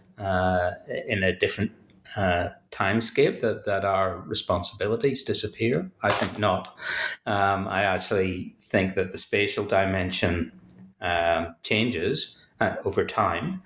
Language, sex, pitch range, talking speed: English, male, 90-100 Hz, 120 wpm